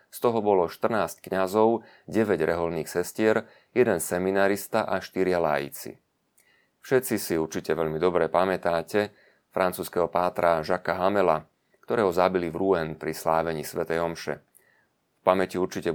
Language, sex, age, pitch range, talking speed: Slovak, male, 30-49, 85-100 Hz, 130 wpm